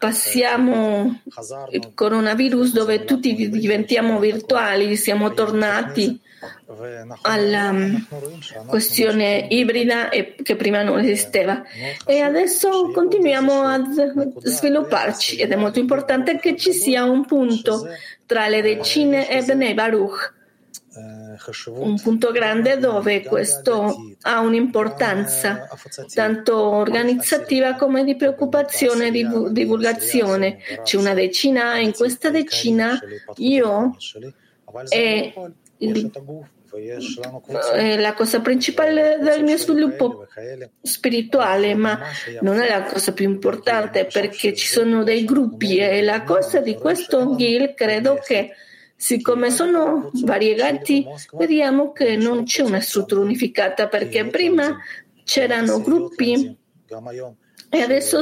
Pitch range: 210-270 Hz